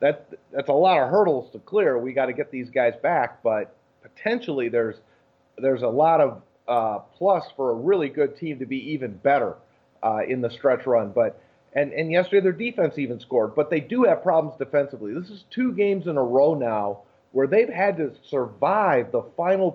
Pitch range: 125-160 Hz